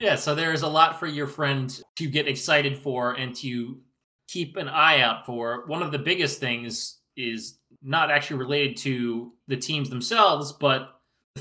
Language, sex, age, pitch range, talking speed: English, male, 20-39, 125-145 Hz, 180 wpm